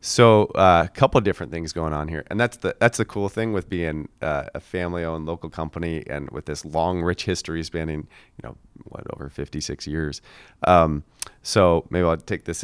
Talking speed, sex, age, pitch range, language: 205 wpm, male, 30-49, 75-90 Hz, English